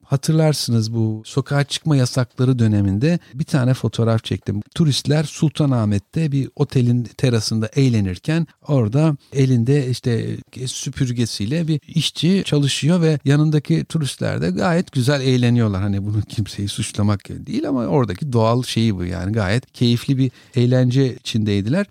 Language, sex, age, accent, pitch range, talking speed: Turkish, male, 50-69, native, 120-160 Hz, 125 wpm